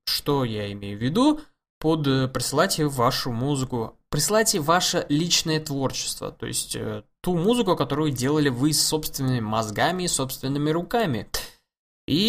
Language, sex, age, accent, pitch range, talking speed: Russian, male, 20-39, native, 125-170 Hz, 135 wpm